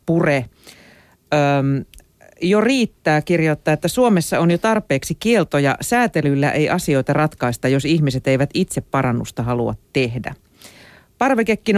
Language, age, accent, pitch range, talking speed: Finnish, 40-59, native, 130-170 Hz, 110 wpm